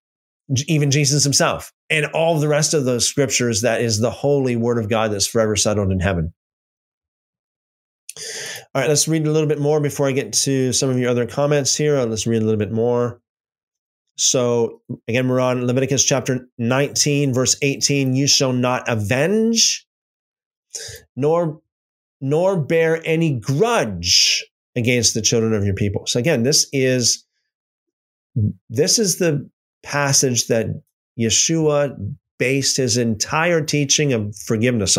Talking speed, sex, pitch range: 145 wpm, male, 115-150 Hz